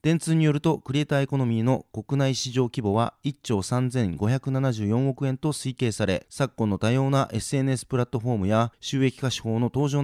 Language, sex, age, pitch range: Japanese, male, 30-49, 110-140 Hz